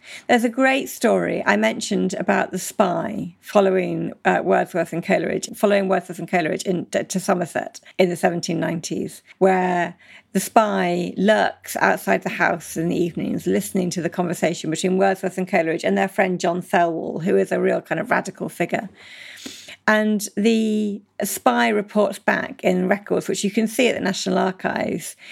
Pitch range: 180-220 Hz